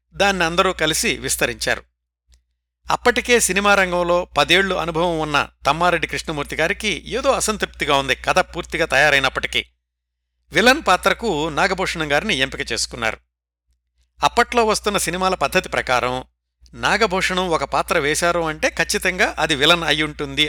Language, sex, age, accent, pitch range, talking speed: Telugu, male, 60-79, native, 125-185 Hz, 110 wpm